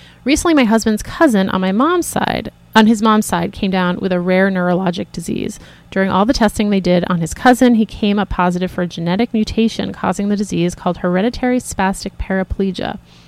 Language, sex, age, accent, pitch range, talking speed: English, female, 30-49, American, 180-220 Hz, 195 wpm